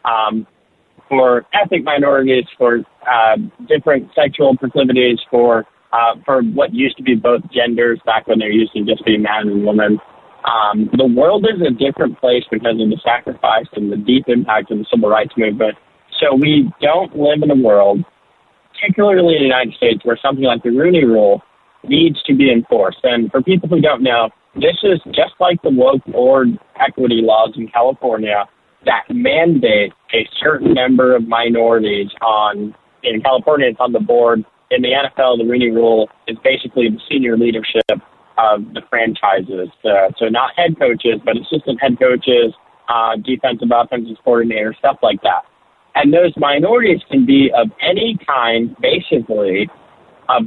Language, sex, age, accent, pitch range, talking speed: English, male, 30-49, American, 110-145 Hz, 170 wpm